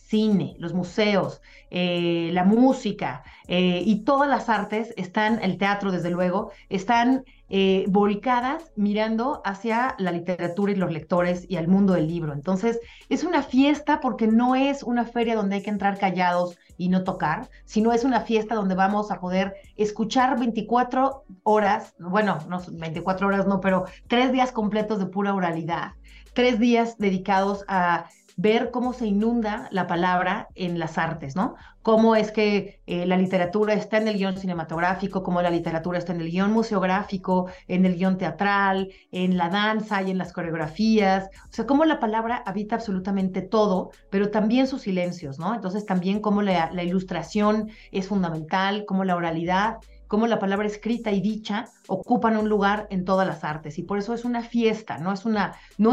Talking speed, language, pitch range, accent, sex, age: 175 wpm, Spanish, 185-220 Hz, Mexican, female, 30-49